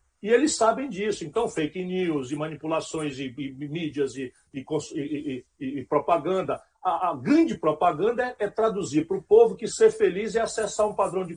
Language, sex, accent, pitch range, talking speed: Portuguese, male, Brazilian, 155-230 Hz, 190 wpm